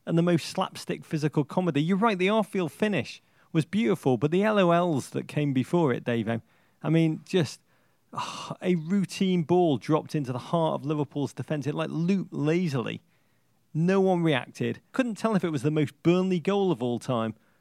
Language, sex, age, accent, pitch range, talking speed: English, male, 40-59, British, 140-175 Hz, 185 wpm